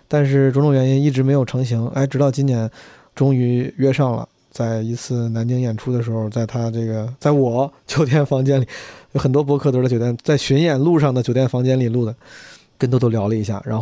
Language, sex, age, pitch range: Chinese, male, 20-39, 120-145 Hz